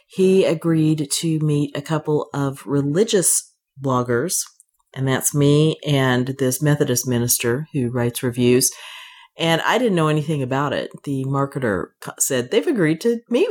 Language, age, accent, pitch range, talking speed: English, 40-59, American, 140-195 Hz, 145 wpm